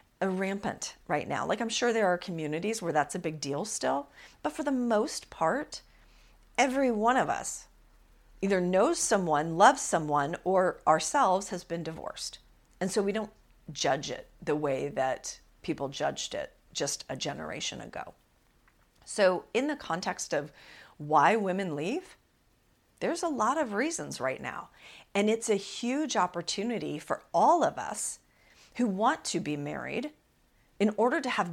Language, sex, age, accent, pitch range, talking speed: English, female, 40-59, American, 165-235 Hz, 160 wpm